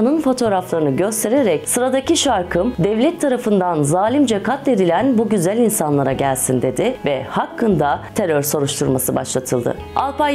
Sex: female